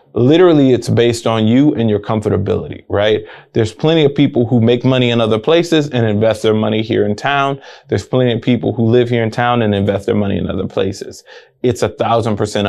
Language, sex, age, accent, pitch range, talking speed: English, male, 20-39, American, 105-125 Hz, 220 wpm